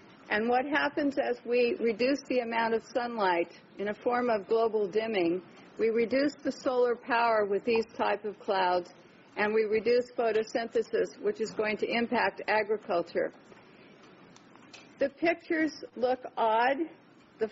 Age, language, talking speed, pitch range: 50-69, English, 140 wpm, 210-250 Hz